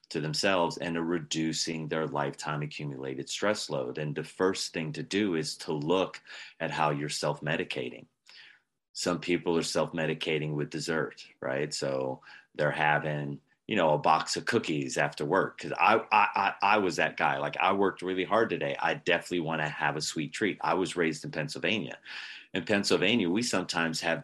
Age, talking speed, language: 30-49, 180 wpm, English